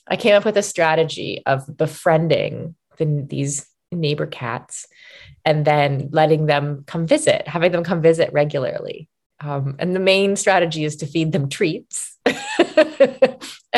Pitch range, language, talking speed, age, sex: 150-195 Hz, English, 140 wpm, 20-39, female